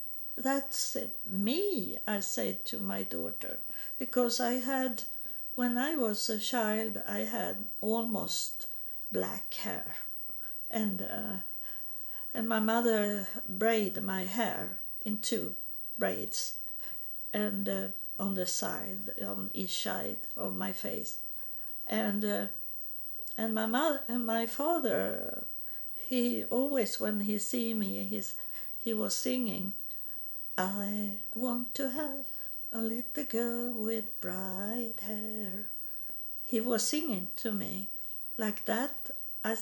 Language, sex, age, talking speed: English, female, 60-79, 120 wpm